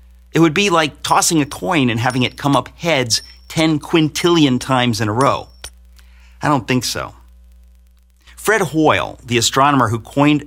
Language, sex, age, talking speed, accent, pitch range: English, male, 50-69, 165 wpm, American, 100-150 Hz